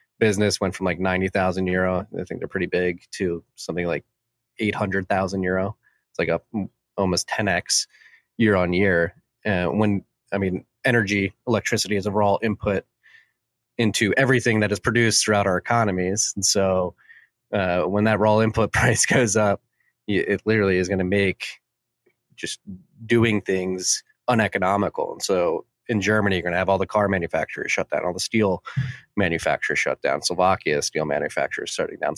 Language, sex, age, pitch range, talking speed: English, male, 20-39, 95-110 Hz, 165 wpm